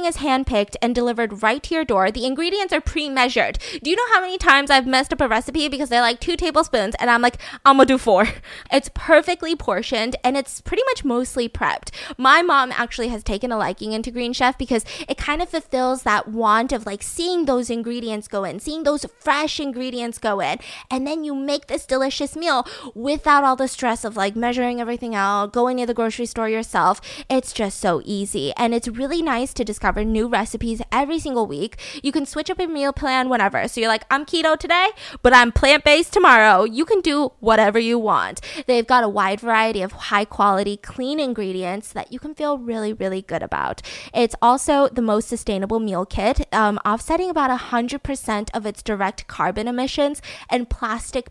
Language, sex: English, female